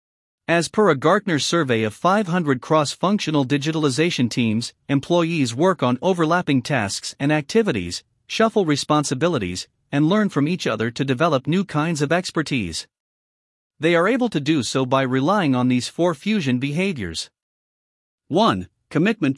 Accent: American